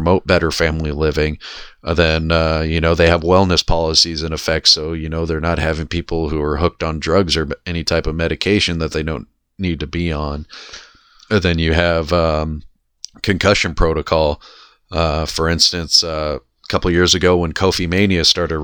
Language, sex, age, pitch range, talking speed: English, male, 30-49, 80-90 Hz, 185 wpm